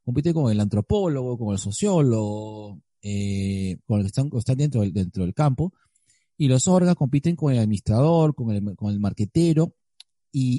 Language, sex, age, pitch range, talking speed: Spanish, male, 40-59, 115-160 Hz, 175 wpm